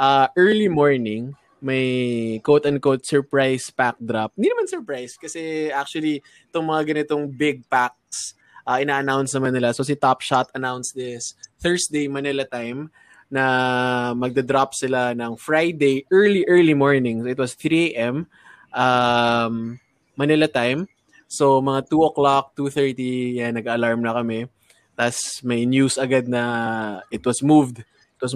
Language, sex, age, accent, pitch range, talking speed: Filipino, male, 20-39, native, 125-150 Hz, 140 wpm